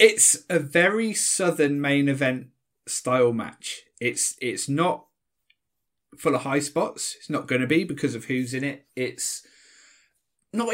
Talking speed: 145 wpm